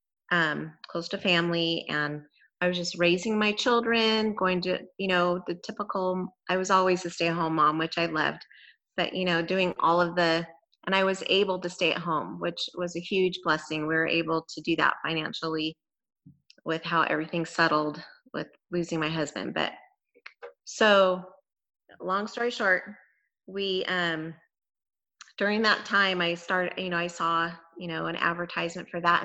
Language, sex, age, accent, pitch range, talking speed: English, female, 30-49, American, 170-195 Hz, 170 wpm